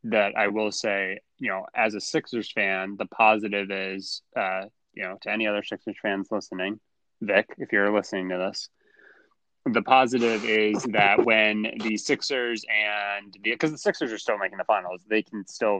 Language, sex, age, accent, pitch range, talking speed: English, male, 20-39, American, 100-120 Hz, 180 wpm